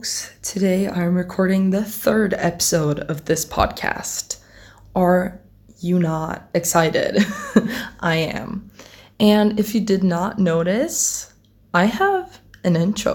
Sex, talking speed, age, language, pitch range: female, 115 wpm, 20-39, English, 160-205 Hz